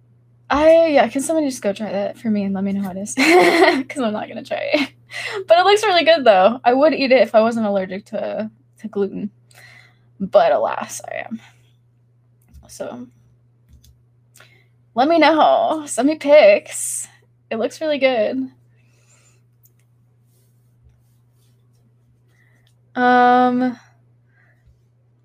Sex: female